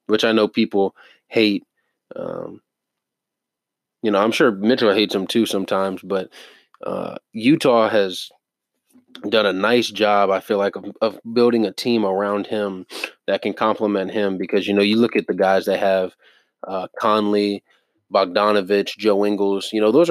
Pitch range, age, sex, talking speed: 100-115 Hz, 20-39, male, 165 wpm